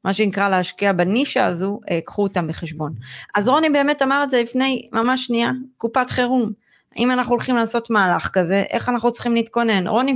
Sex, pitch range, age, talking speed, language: female, 180-230 Hz, 30-49, 175 wpm, Hebrew